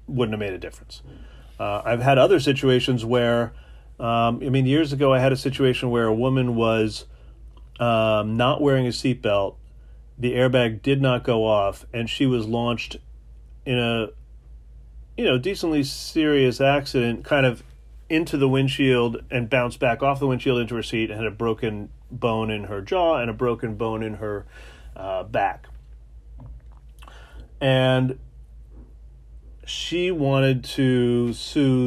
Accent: American